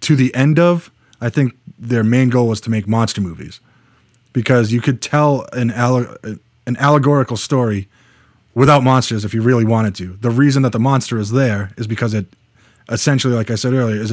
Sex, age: male, 30-49